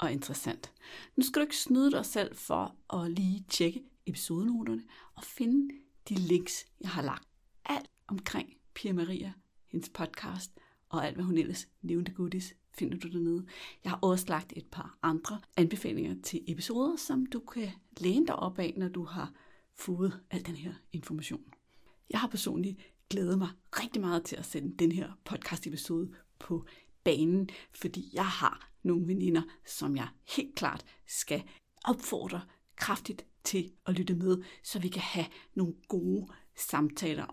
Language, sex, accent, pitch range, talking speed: Danish, female, native, 170-205 Hz, 160 wpm